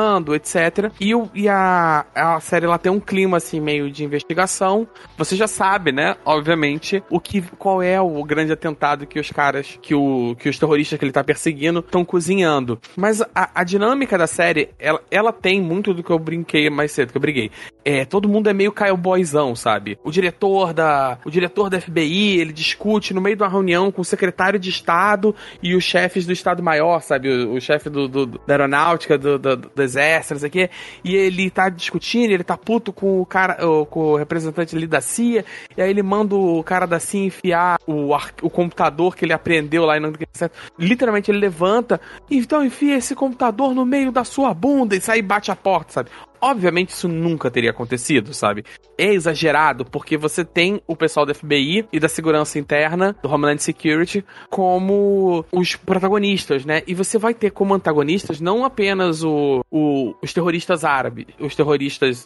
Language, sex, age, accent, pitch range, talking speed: Portuguese, male, 20-39, Brazilian, 150-195 Hz, 190 wpm